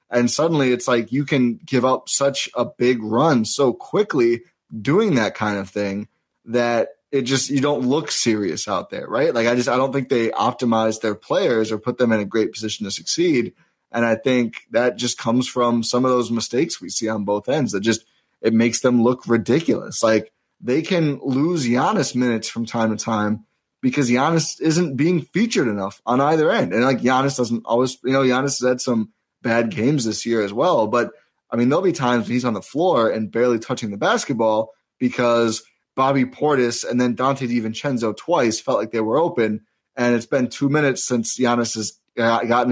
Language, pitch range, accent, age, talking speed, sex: English, 110-130 Hz, American, 20-39, 205 wpm, male